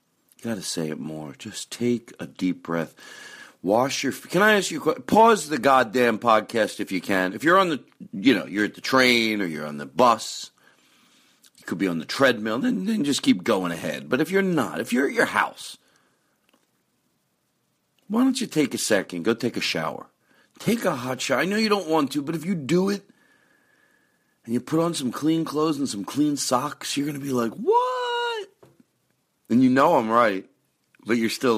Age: 40-59